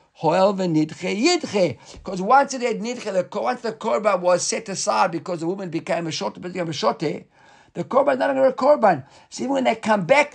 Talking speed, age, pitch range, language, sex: 185 wpm, 50-69, 170-235 Hz, English, male